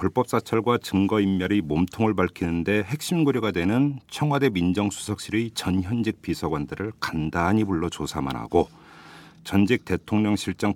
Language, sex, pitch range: Korean, male, 85-120 Hz